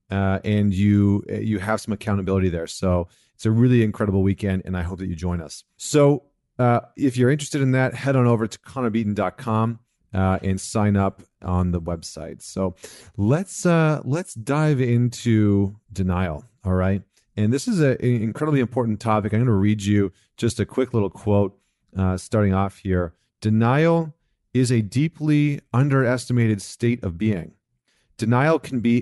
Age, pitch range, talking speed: 30-49, 95-130 Hz, 165 wpm